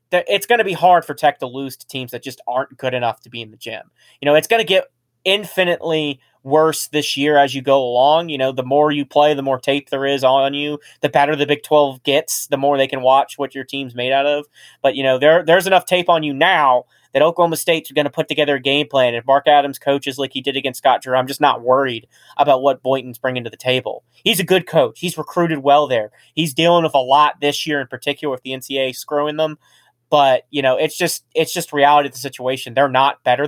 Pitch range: 130-155 Hz